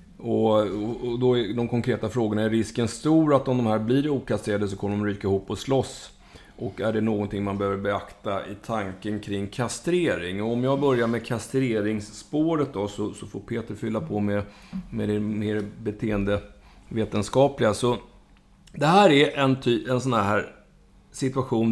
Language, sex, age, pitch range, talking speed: Swedish, male, 30-49, 105-125 Hz, 165 wpm